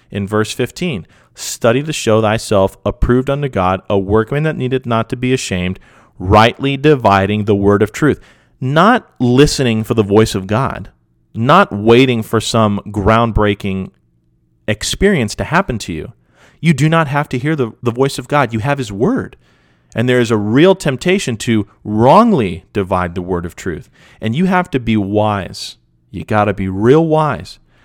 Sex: male